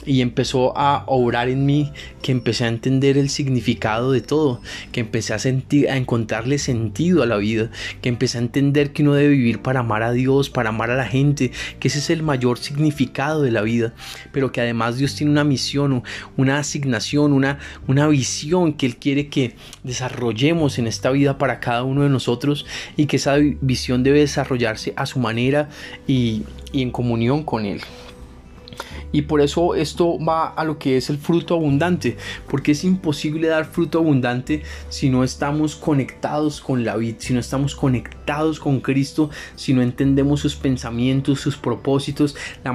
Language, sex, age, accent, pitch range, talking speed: Spanish, male, 30-49, Colombian, 125-145 Hz, 180 wpm